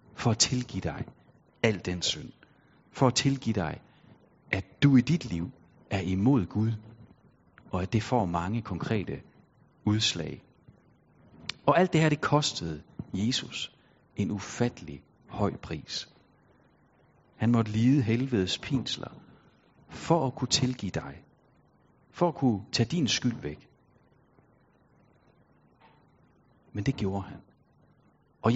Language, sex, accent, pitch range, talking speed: Danish, male, native, 100-130 Hz, 125 wpm